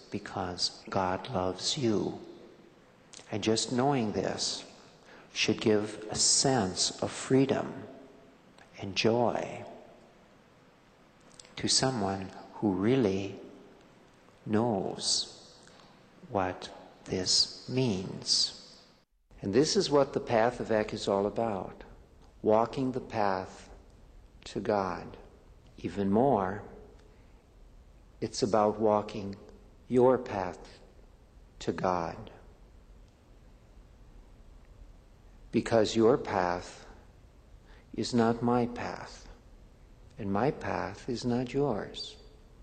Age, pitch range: 60-79, 95-120 Hz